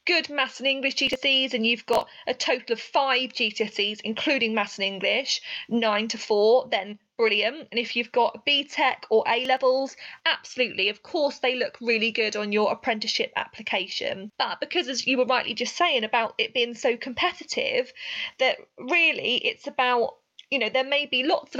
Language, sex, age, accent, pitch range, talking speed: English, female, 20-39, British, 220-280 Hz, 180 wpm